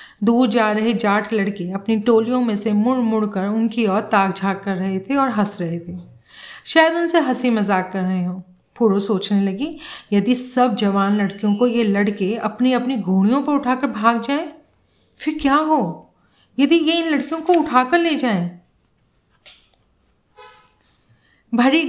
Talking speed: 160 wpm